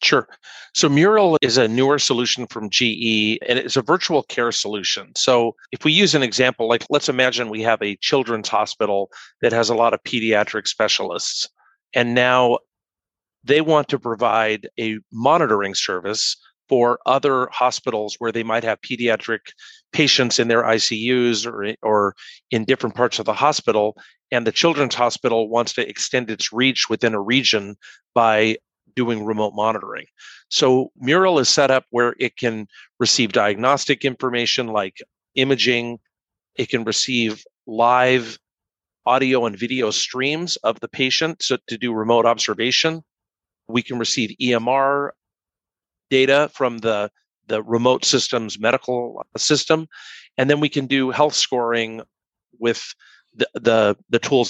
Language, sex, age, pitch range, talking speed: English, male, 50-69, 110-130 Hz, 145 wpm